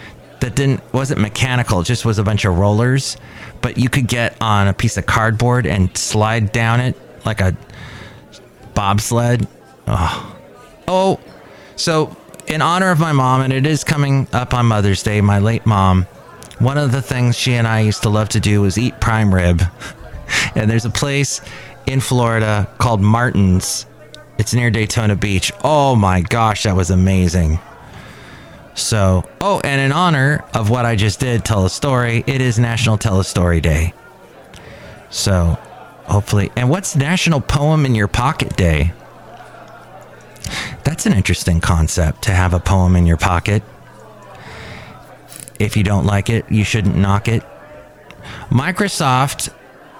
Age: 30-49